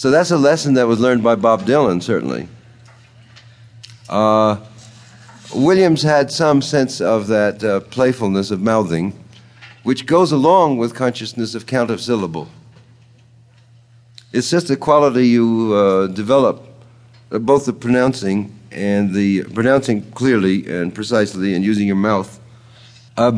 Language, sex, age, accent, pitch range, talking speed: English, male, 50-69, American, 100-125 Hz, 135 wpm